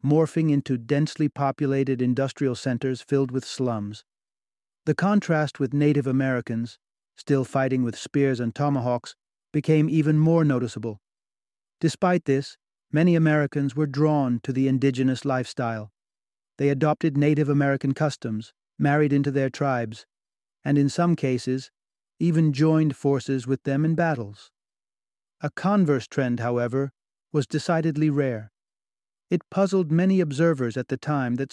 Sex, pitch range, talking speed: male, 130-155 Hz, 130 wpm